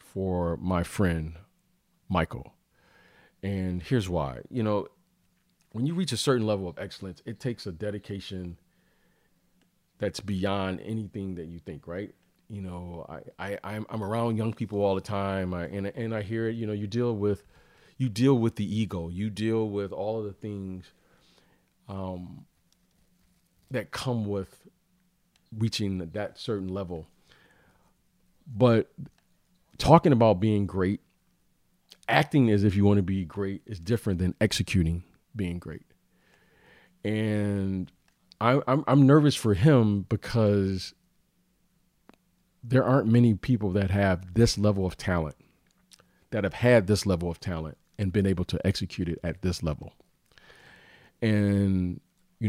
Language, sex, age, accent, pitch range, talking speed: English, male, 40-59, American, 90-115 Hz, 145 wpm